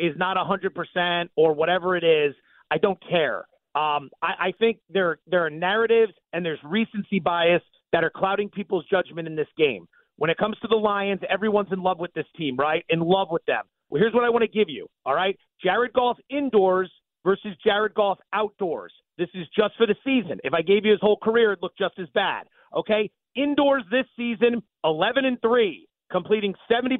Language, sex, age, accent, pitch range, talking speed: English, male, 40-59, American, 185-230 Hz, 205 wpm